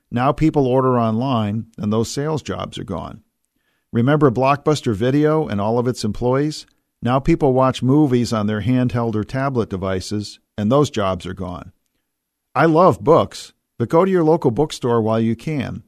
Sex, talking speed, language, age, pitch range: male, 170 wpm, English, 50-69, 105-130 Hz